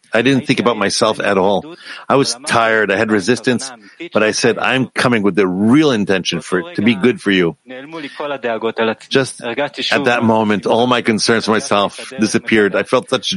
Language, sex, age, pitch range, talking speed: English, male, 50-69, 105-125 Hz, 190 wpm